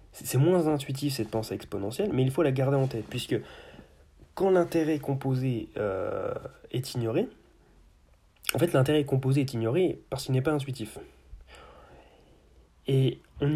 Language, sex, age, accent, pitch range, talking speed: French, male, 20-39, French, 110-140 Hz, 145 wpm